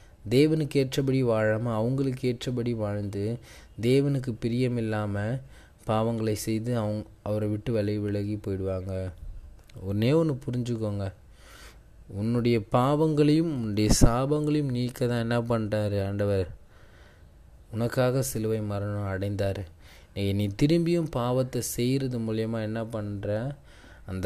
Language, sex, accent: Tamil, male, native